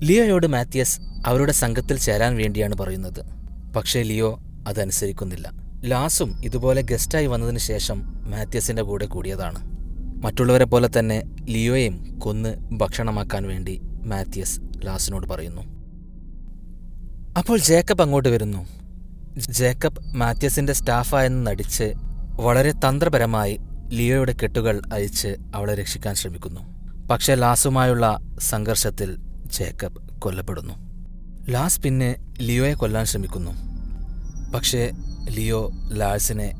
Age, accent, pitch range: 20-39, native, 95-125 Hz